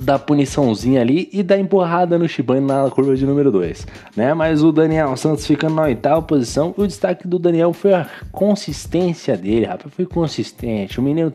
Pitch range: 135-180 Hz